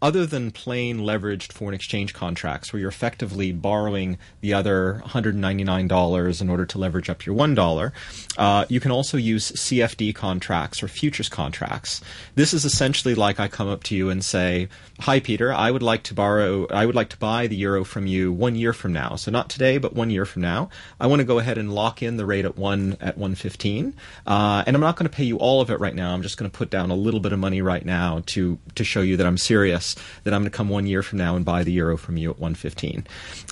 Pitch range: 95-120 Hz